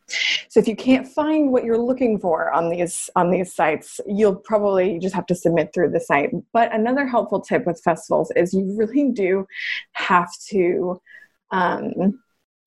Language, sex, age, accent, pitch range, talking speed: English, female, 20-39, American, 175-245 Hz, 170 wpm